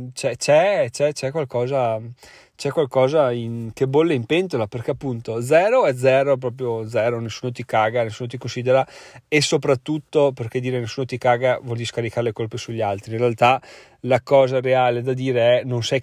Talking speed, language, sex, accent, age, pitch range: 180 wpm, Italian, male, native, 30-49, 120-140 Hz